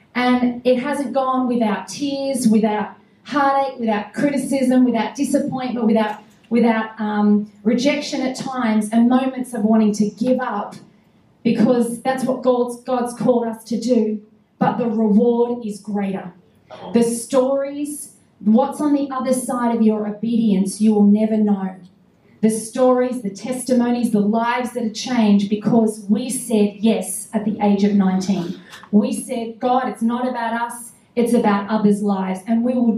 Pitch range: 205-245 Hz